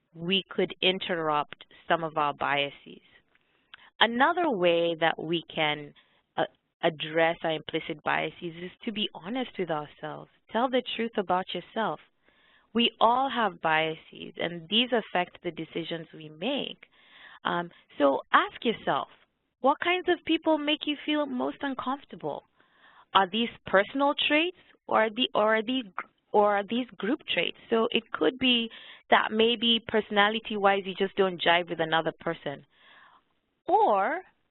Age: 20-39